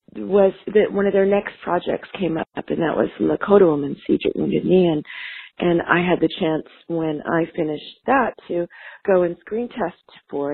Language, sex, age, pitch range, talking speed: English, female, 40-59, 150-195 Hz, 190 wpm